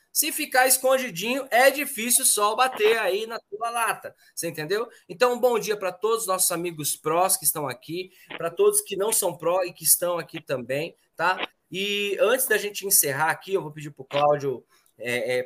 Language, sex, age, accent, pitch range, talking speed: Portuguese, male, 20-39, Brazilian, 175-250 Hz, 200 wpm